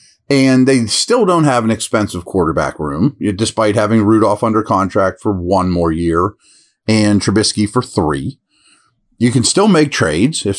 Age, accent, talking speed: 40-59, American, 160 wpm